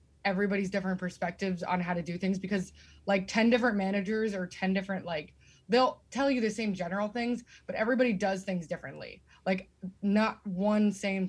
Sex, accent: female, American